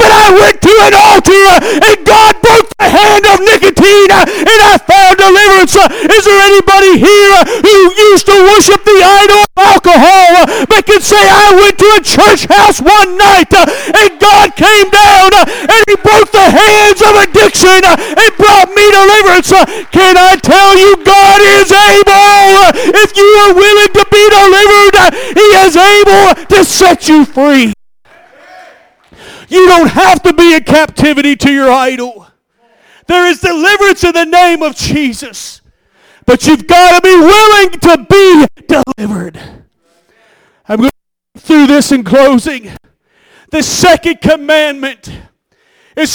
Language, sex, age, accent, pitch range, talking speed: English, male, 50-69, American, 315-410 Hz, 165 wpm